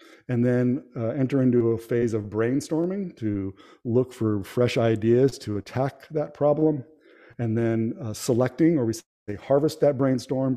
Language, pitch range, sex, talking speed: English, 115-145 Hz, male, 160 wpm